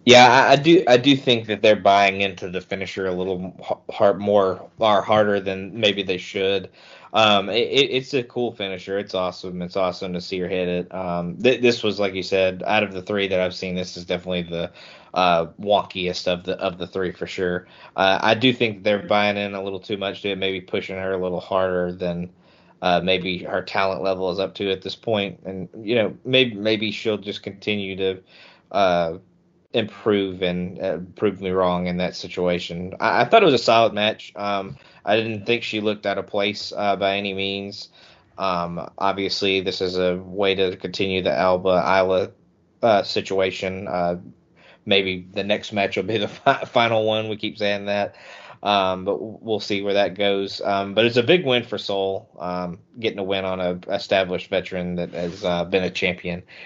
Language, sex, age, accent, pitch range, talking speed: English, male, 20-39, American, 90-105 Hz, 205 wpm